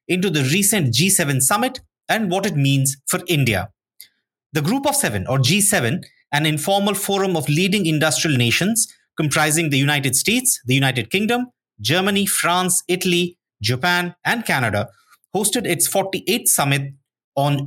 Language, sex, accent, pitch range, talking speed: English, male, Indian, 140-190 Hz, 145 wpm